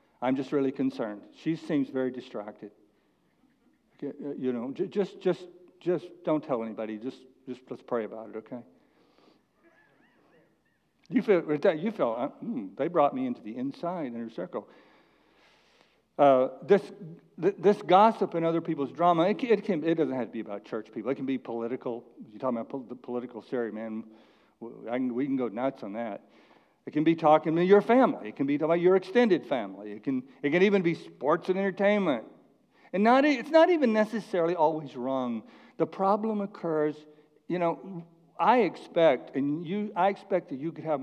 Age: 60-79